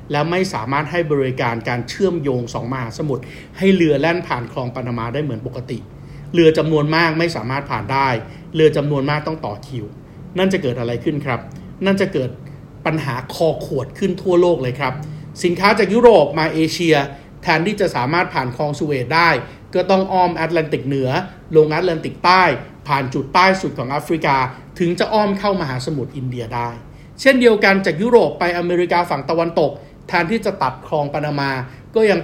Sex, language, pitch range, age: male, Thai, 135-180 Hz, 60-79